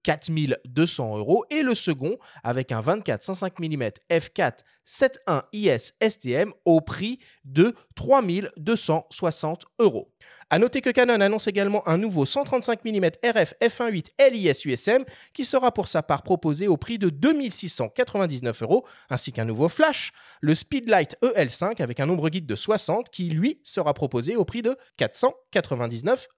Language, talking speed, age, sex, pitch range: French, 150 wpm, 30-49, male, 160-235 Hz